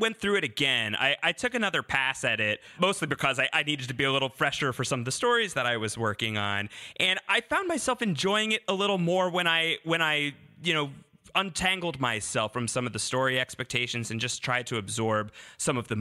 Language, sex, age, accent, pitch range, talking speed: English, male, 30-49, American, 115-165 Hz, 230 wpm